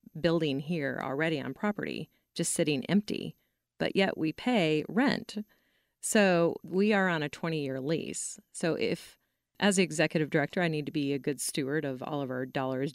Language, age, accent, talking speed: English, 30-49, American, 175 wpm